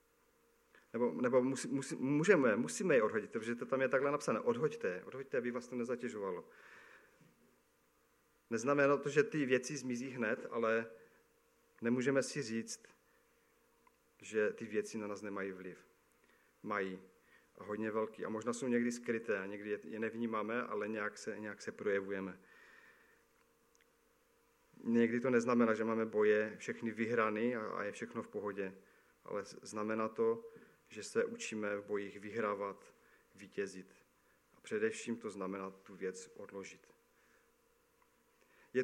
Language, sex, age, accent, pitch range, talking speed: Czech, male, 40-59, native, 105-130 Hz, 135 wpm